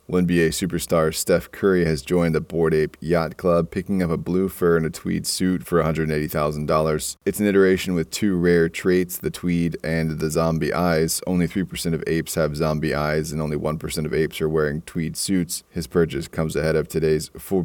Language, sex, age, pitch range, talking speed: English, male, 30-49, 80-85 Hz, 195 wpm